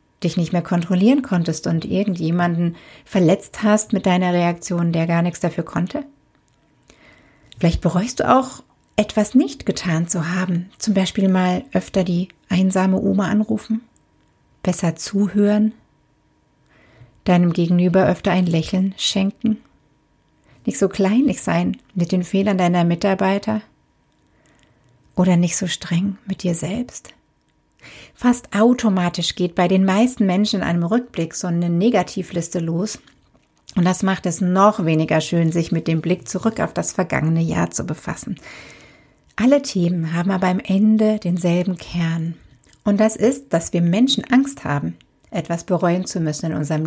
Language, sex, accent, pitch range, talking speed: German, female, German, 170-210 Hz, 145 wpm